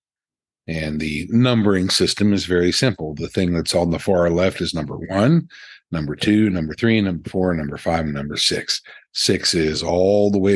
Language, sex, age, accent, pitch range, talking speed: English, male, 50-69, American, 85-110 Hz, 180 wpm